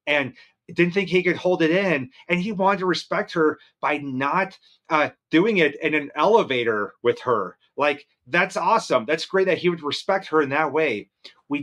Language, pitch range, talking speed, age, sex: English, 145-180 Hz, 195 wpm, 30-49, male